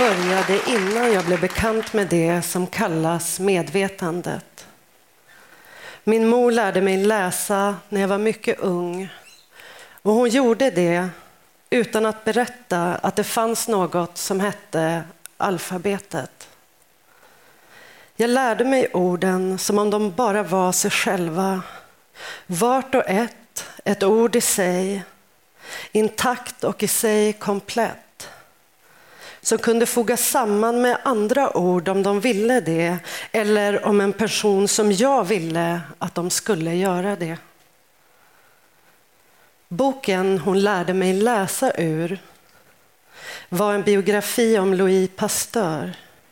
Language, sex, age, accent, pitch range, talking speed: English, female, 40-59, Swedish, 185-230 Hz, 120 wpm